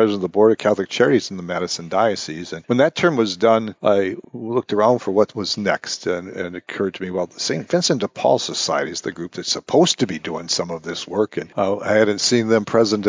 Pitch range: 90-110 Hz